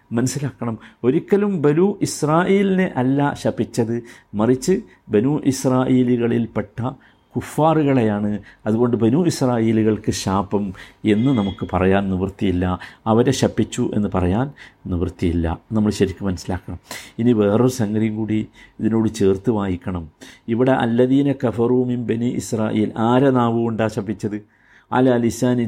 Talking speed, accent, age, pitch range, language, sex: 100 wpm, native, 50-69, 110-180 Hz, Malayalam, male